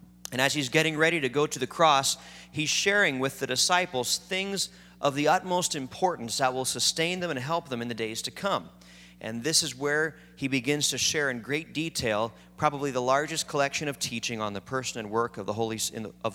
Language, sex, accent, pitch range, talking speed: English, male, American, 105-160 Hz, 200 wpm